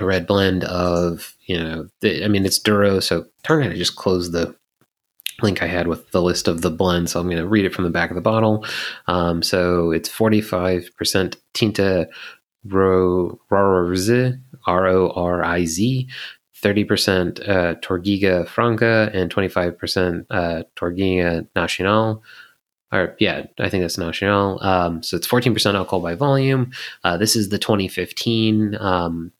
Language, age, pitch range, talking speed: English, 30-49, 85-105 Hz, 165 wpm